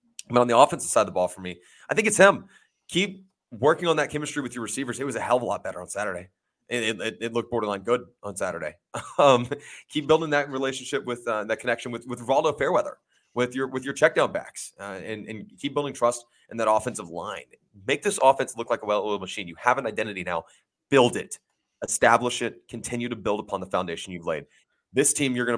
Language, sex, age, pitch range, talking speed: English, male, 30-49, 100-130 Hz, 235 wpm